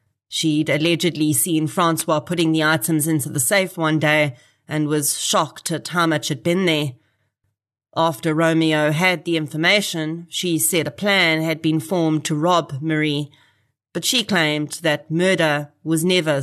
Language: English